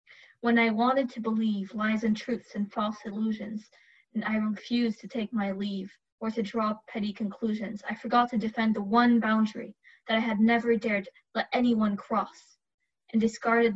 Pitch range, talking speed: 200-230 Hz, 175 wpm